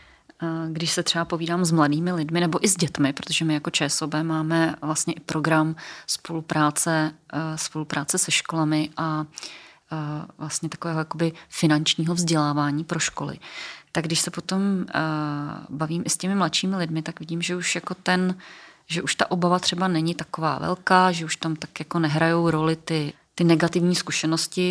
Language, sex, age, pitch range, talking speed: Czech, female, 30-49, 160-180 Hz, 160 wpm